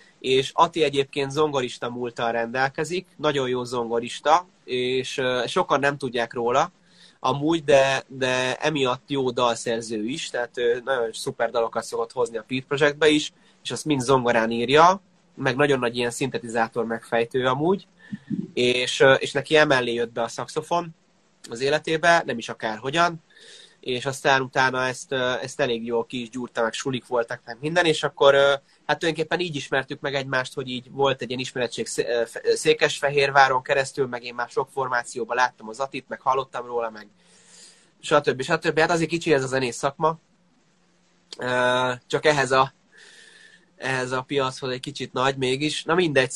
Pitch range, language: 125-160 Hz, Hungarian